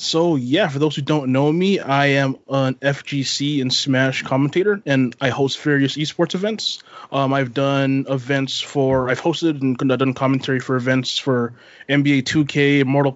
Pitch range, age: 130-150 Hz, 20-39